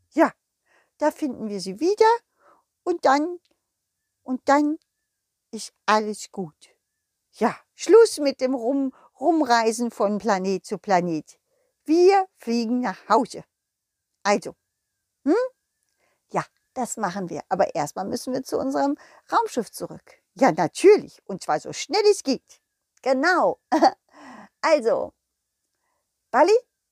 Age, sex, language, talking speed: 50-69, female, German, 115 wpm